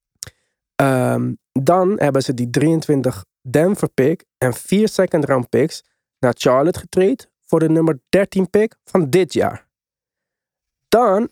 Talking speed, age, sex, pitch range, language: 135 wpm, 20-39, male, 130-170 Hz, Dutch